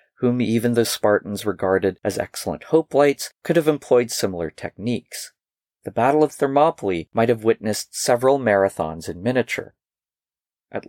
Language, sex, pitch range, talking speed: English, male, 100-130 Hz, 140 wpm